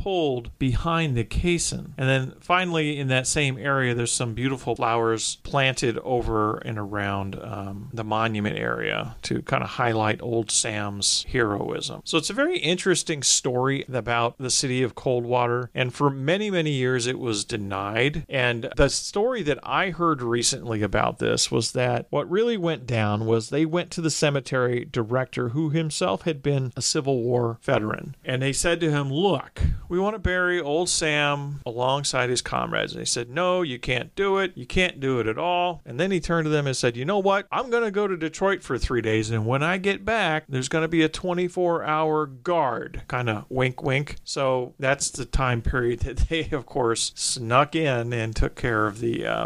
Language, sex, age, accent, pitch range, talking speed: English, male, 40-59, American, 115-160 Hz, 200 wpm